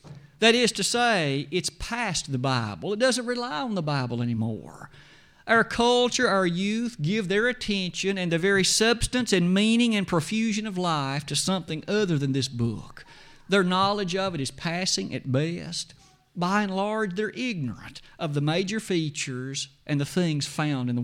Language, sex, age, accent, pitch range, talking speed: English, male, 50-69, American, 140-195 Hz, 175 wpm